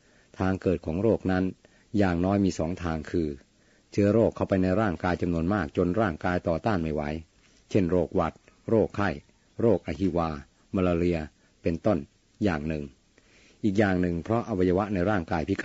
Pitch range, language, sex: 85-100 Hz, Thai, male